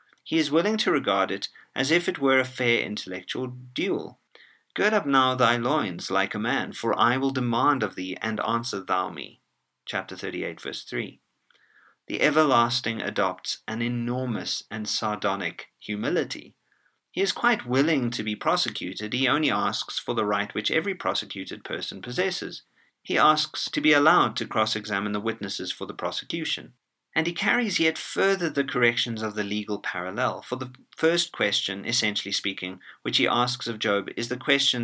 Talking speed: 170 wpm